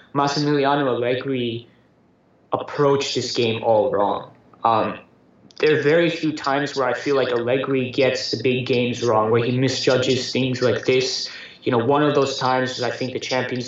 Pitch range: 130-150 Hz